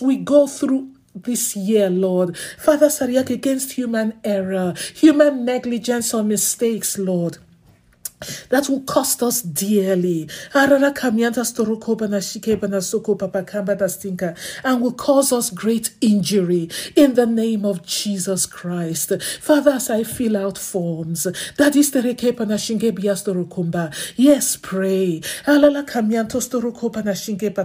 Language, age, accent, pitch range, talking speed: English, 50-69, Nigerian, 185-250 Hz, 95 wpm